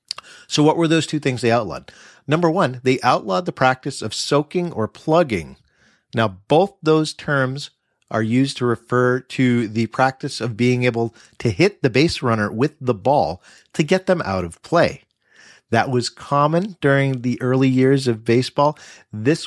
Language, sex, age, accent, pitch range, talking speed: English, male, 40-59, American, 115-140 Hz, 175 wpm